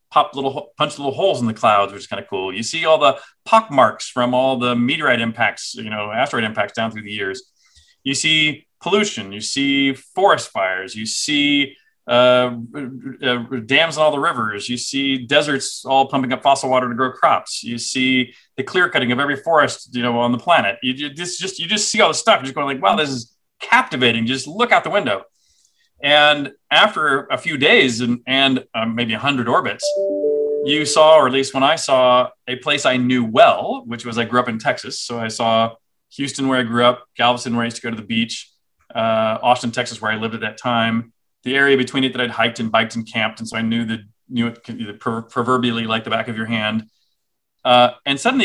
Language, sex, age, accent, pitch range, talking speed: English, male, 40-59, American, 115-145 Hz, 225 wpm